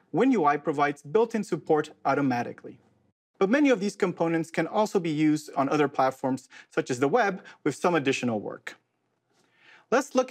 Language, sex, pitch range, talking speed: English, male, 145-200 Hz, 155 wpm